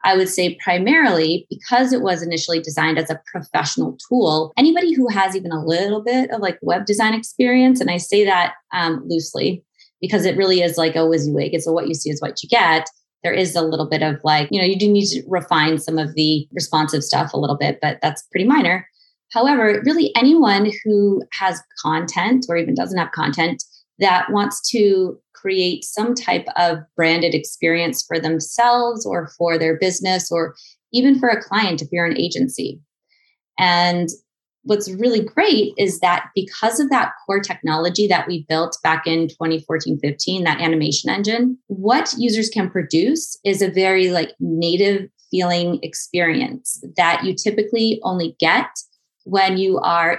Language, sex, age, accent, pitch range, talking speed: English, female, 20-39, American, 165-215 Hz, 175 wpm